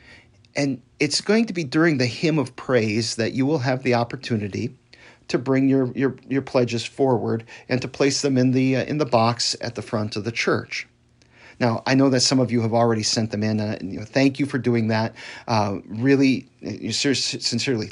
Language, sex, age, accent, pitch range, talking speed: English, male, 40-59, American, 115-135 Hz, 210 wpm